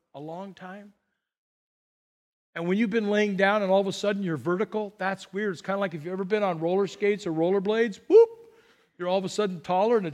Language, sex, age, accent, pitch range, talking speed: English, male, 40-59, American, 185-255 Hz, 245 wpm